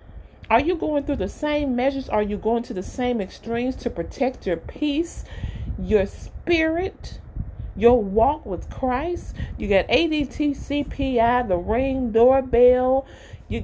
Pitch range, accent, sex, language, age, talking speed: 175-265 Hz, American, female, English, 40-59, 140 wpm